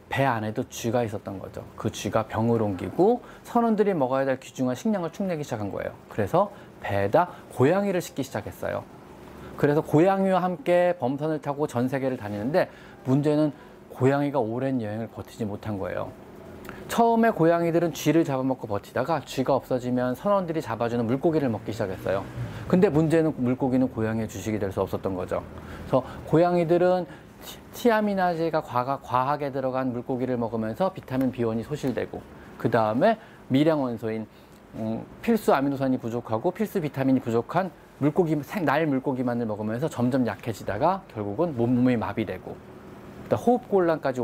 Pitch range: 115-170 Hz